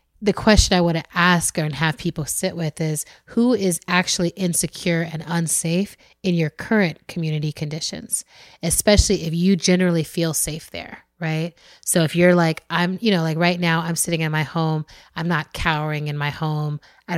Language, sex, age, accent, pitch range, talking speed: English, female, 30-49, American, 155-180 Hz, 185 wpm